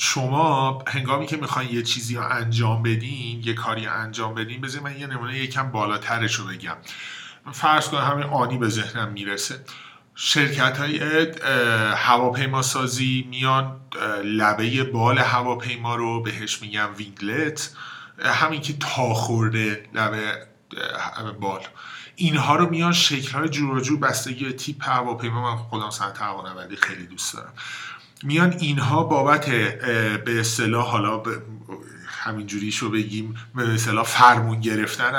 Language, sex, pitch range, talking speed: Persian, male, 115-140 Hz, 125 wpm